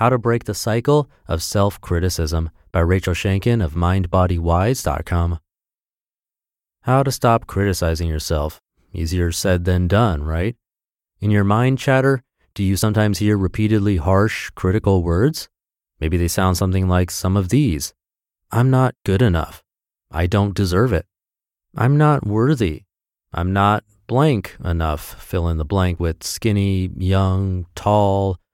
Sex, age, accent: male, 30-49, American